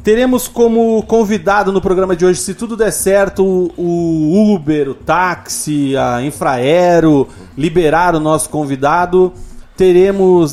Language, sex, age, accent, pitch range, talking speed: Portuguese, male, 40-59, Brazilian, 140-185 Hz, 125 wpm